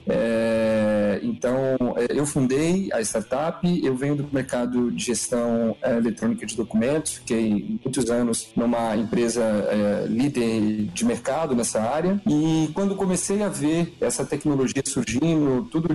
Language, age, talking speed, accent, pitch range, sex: Portuguese, 40-59, 135 wpm, Brazilian, 120-175 Hz, male